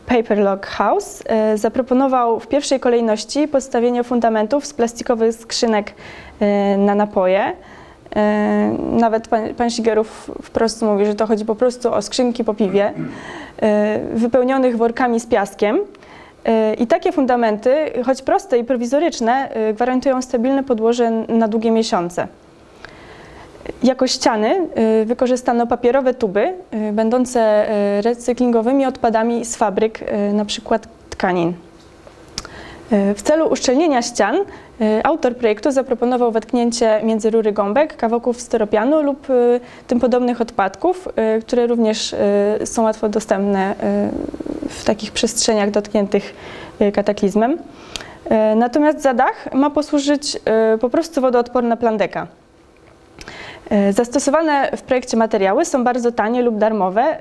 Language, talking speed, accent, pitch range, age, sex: Polish, 105 wpm, native, 215-255 Hz, 20-39, female